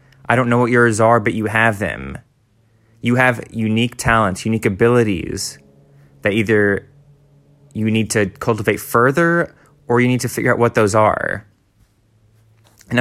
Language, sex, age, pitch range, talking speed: English, male, 20-39, 100-120 Hz, 150 wpm